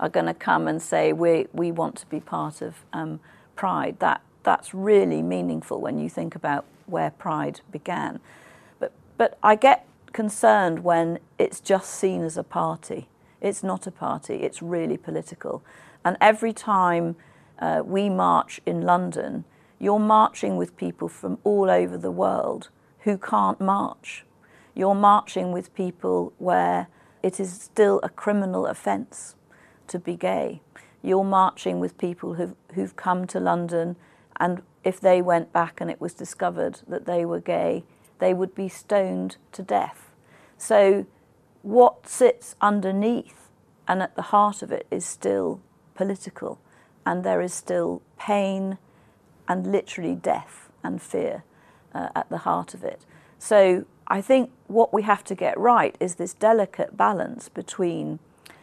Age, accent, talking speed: 50-69, British, 150 wpm